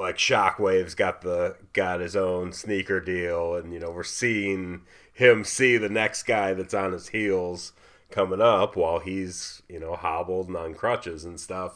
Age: 30-49